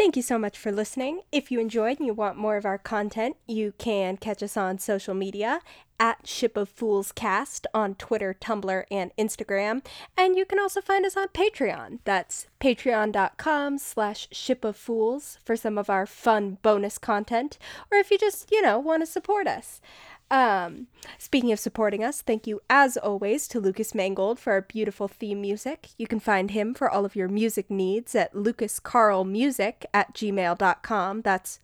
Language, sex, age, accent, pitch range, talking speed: English, female, 10-29, American, 205-260 Hz, 180 wpm